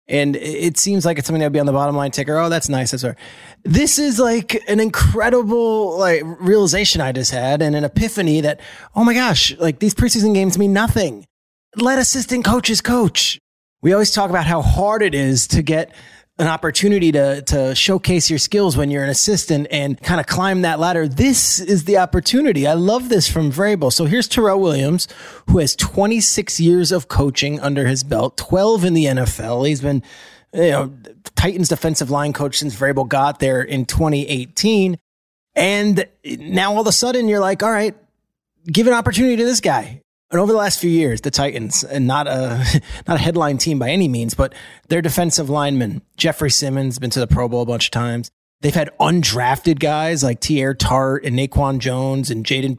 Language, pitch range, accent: English, 140-200 Hz, American